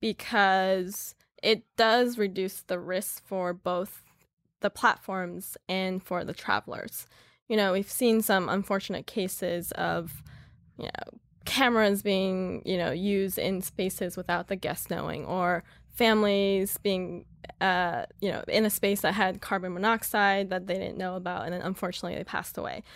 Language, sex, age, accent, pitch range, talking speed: English, female, 10-29, American, 180-210 Hz, 155 wpm